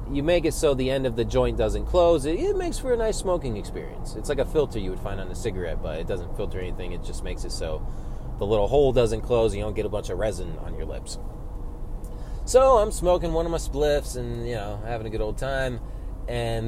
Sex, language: male, English